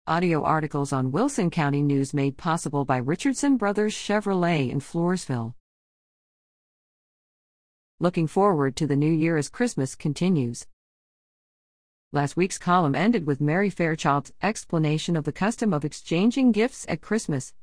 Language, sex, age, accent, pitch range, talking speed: English, female, 50-69, American, 140-185 Hz, 135 wpm